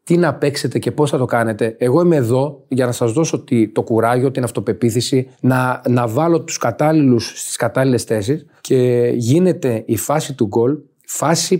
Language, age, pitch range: Greek, 30-49, 120-150 Hz